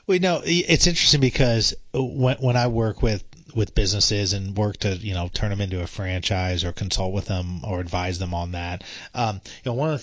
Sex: male